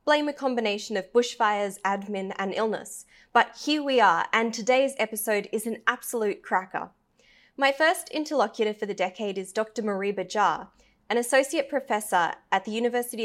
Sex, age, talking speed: female, 20-39, 160 wpm